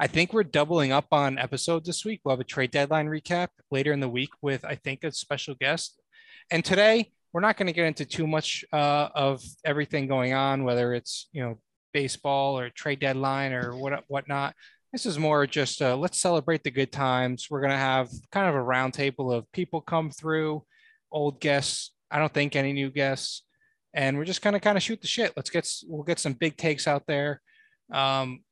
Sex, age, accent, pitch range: male, 20-39, American, 135-165 Hz